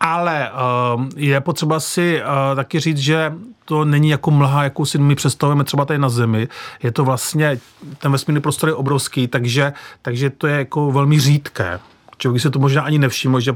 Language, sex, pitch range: Czech, male, 125-155 Hz